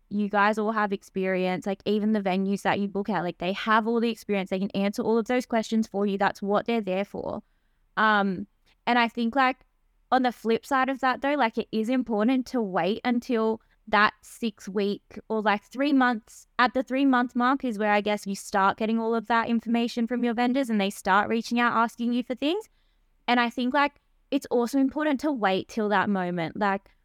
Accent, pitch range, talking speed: Australian, 200-245 Hz, 220 wpm